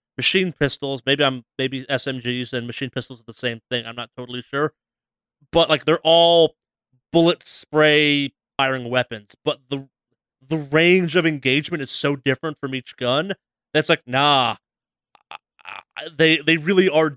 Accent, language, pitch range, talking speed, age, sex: American, English, 135-165 Hz, 160 wpm, 30-49, male